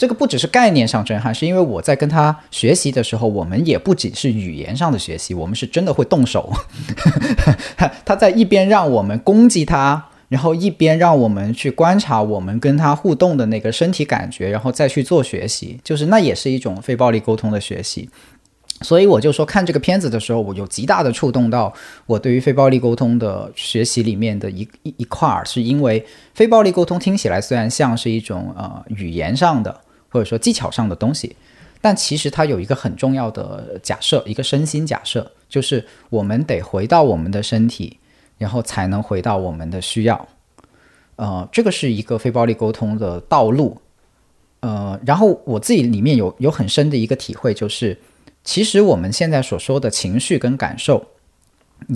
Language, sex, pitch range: Chinese, male, 105-145 Hz